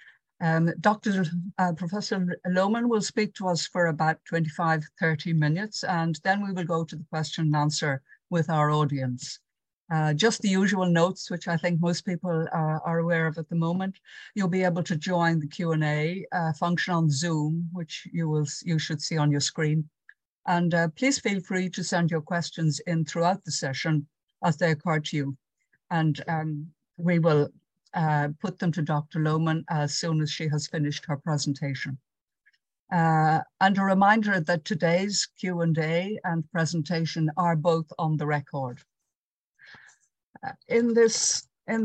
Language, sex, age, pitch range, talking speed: English, female, 60-79, 155-180 Hz, 165 wpm